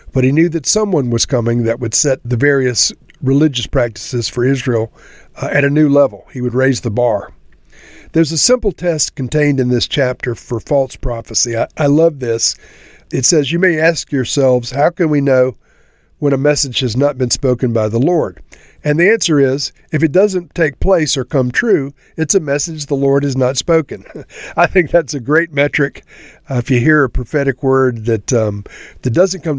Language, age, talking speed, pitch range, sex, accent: English, 50-69, 195 wpm, 125-155 Hz, male, American